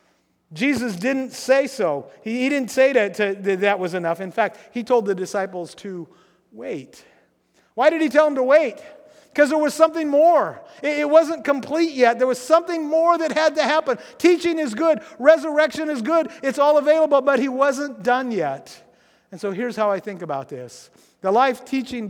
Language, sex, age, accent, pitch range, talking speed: English, male, 50-69, American, 185-275 Hz, 195 wpm